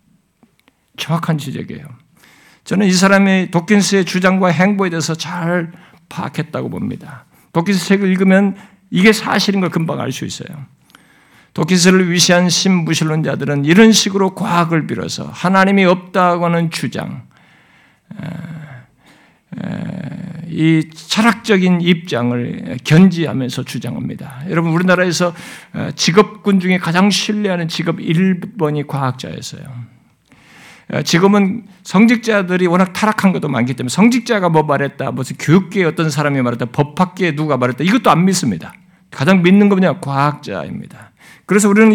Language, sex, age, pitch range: Korean, male, 60-79, 155-200 Hz